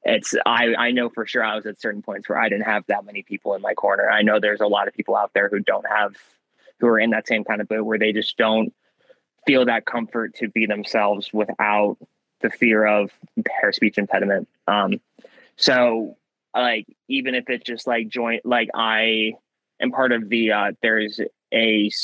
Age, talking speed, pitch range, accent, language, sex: 20-39, 205 wpm, 105-115 Hz, American, English, male